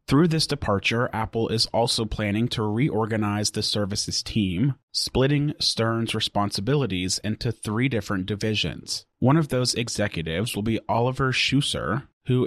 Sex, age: male, 30-49